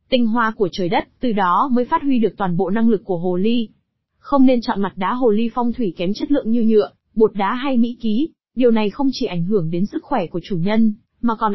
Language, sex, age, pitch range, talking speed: Vietnamese, female, 20-39, 205-255 Hz, 265 wpm